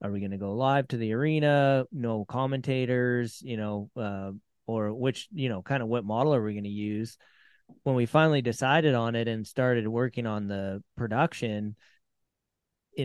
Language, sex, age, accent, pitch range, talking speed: English, male, 20-39, American, 100-125 Hz, 185 wpm